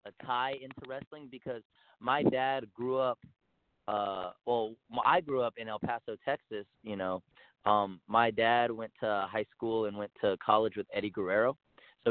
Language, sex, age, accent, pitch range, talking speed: English, male, 30-49, American, 100-125 Hz, 175 wpm